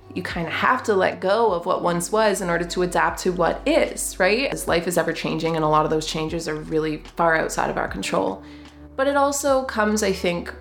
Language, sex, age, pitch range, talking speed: English, female, 20-39, 165-215 Hz, 240 wpm